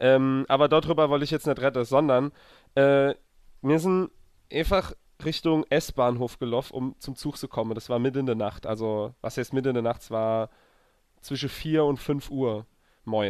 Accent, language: German, German